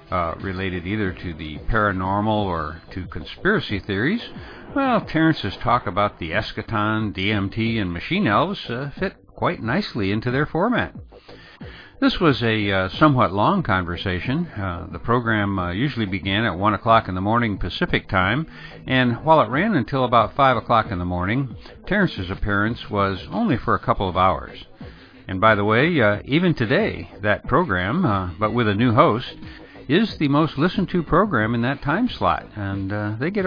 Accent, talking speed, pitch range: American, 170 wpm, 95-140 Hz